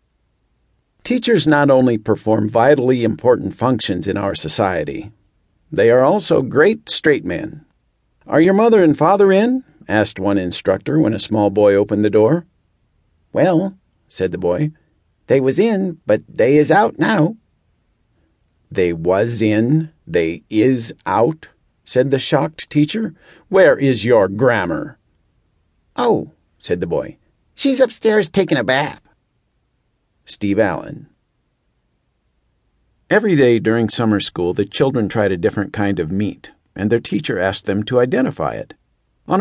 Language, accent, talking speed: English, American, 140 wpm